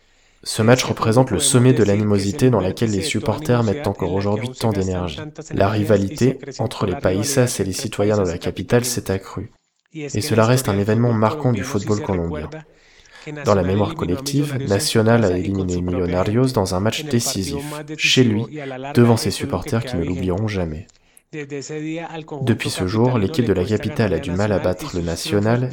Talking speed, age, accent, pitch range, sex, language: 170 wpm, 20-39, French, 95-130 Hz, male, French